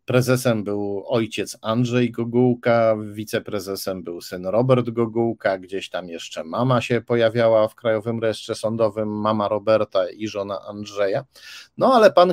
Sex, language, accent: male, Polish, native